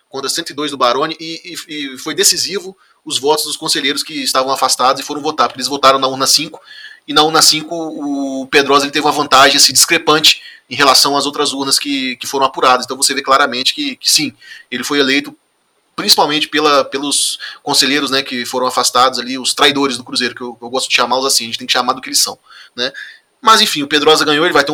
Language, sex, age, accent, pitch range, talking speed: Portuguese, male, 20-39, Brazilian, 130-155 Hz, 230 wpm